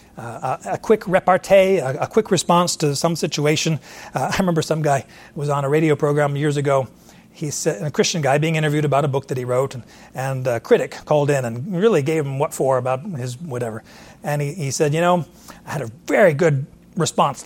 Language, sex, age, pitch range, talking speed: English, male, 40-59, 140-180 Hz, 215 wpm